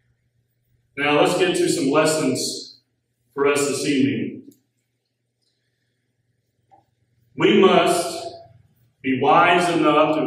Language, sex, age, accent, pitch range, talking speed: English, male, 40-59, American, 125-170 Hz, 95 wpm